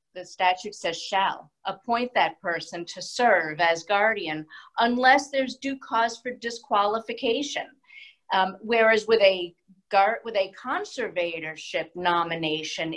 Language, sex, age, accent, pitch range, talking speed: English, female, 50-69, American, 180-240 Hz, 120 wpm